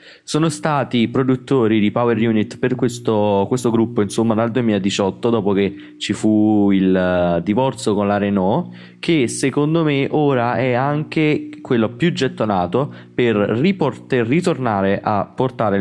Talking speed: 135 wpm